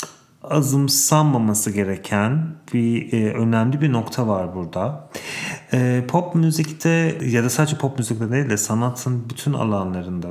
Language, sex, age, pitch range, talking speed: English, male, 40-59, 105-135 Hz, 135 wpm